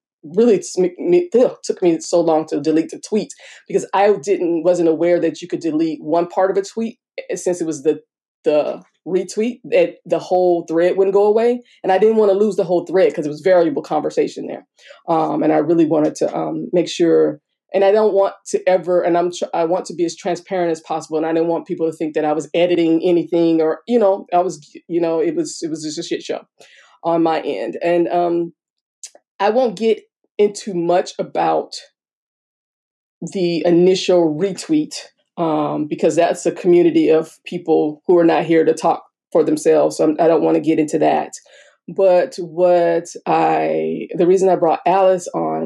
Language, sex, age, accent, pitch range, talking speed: English, female, 20-39, American, 165-225 Hz, 200 wpm